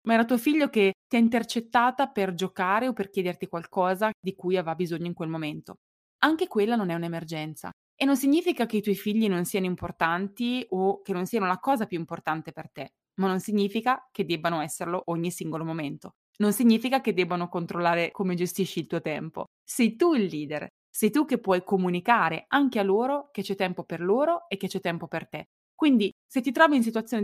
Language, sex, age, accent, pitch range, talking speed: Italian, female, 20-39, native, 175-230 Hz, 205 wpm